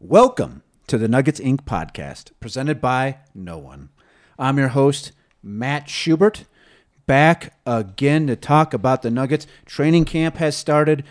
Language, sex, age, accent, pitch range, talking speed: English, male, 30-49, American, 105-140 Hz, 140 wpm